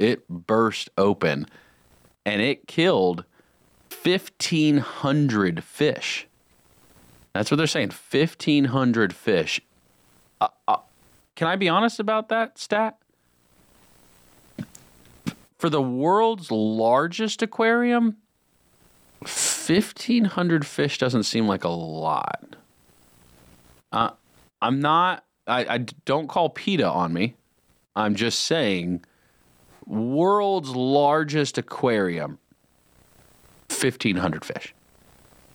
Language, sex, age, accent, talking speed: English, male, 30-49, American, 90 wpm